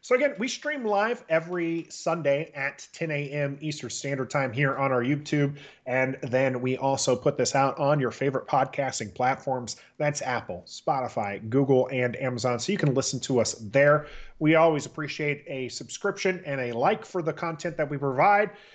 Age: 30-49